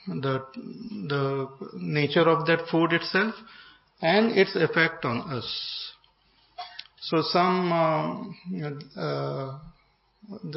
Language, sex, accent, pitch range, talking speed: English, male, Indian, 135-175 Hz, 85 wpm